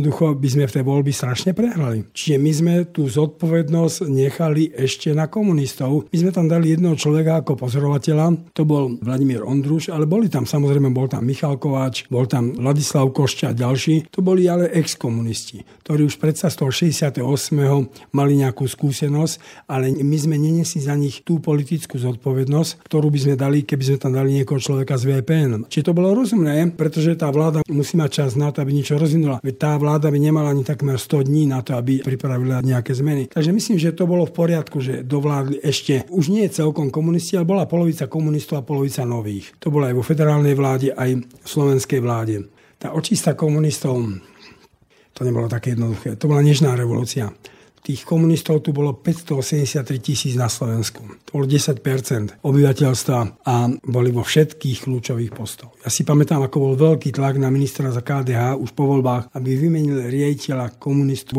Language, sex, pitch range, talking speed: Slovak, male, 130-155 Hz, 175 wpm